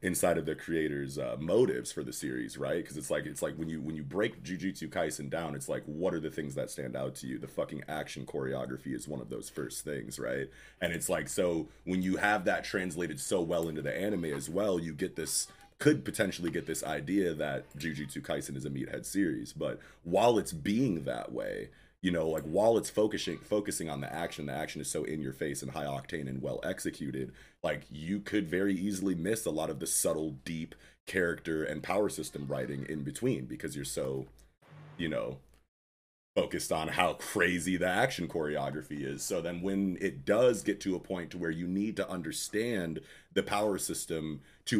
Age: 30-49